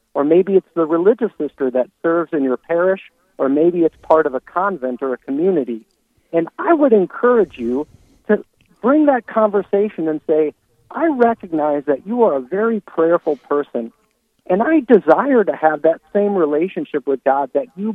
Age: 50-69